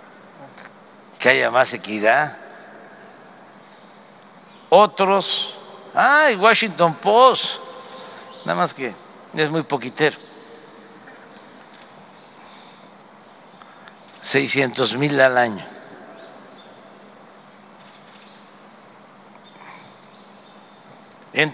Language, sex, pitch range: Spanish, male, 150-220 Hz